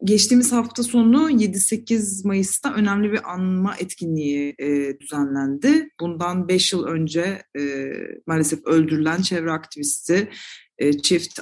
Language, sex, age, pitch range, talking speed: Turkish, female, 30-49, 150-185 Hz, 115 wpm